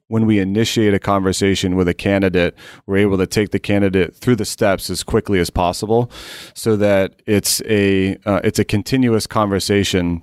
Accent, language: American, English